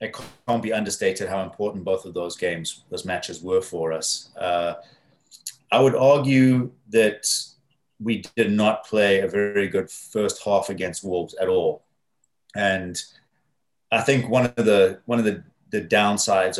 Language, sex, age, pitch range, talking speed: English, male, 30-49, 90-110 Hz, 160 wpm